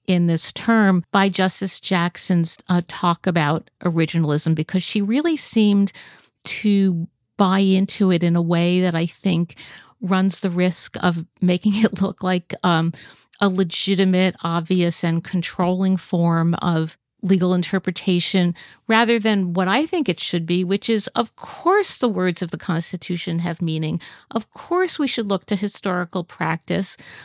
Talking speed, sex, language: 150 wpm, female, English